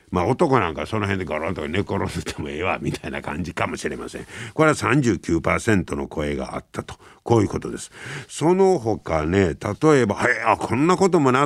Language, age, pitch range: Japanese, 60-79, 85-140 Hz